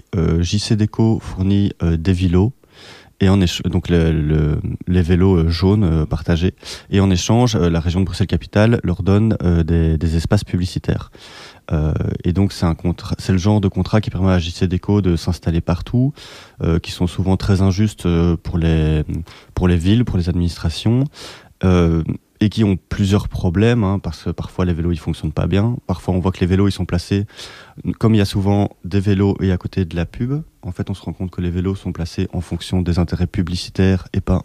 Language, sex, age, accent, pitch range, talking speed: French, male, 30-49, French, 85-100 Hz, 210 wpm